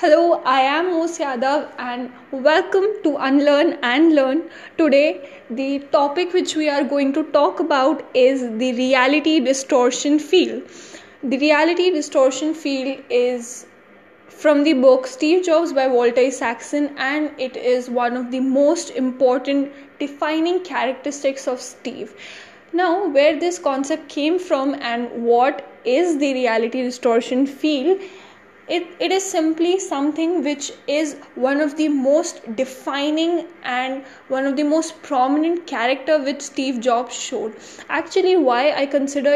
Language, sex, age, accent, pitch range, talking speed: English, female, 10-29, Indian, 260-320 Hz, 140 wpm